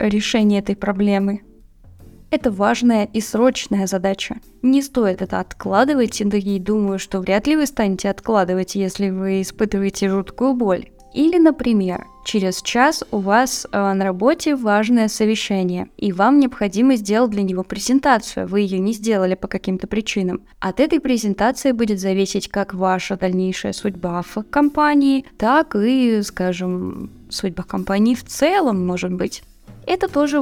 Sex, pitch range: female, 190-245 Hz